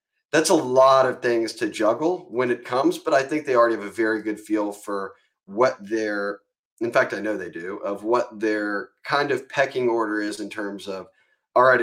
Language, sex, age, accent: English, male, 30-49, American